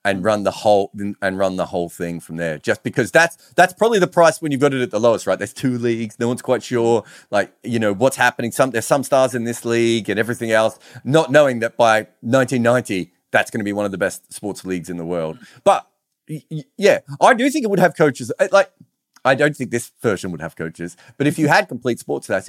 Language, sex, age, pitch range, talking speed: English, male, 30-49, 100-140 Hz, 245 wpm